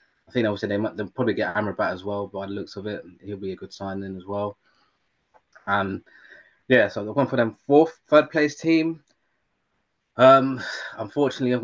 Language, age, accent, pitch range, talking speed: English, 20-39, British, 95-110 Hz, 195 wpm